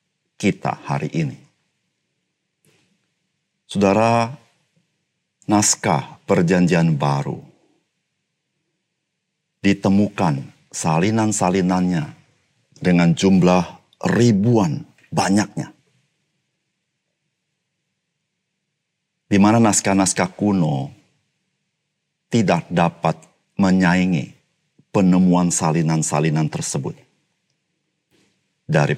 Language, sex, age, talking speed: Indonesian, male, 50-69, 50 wpm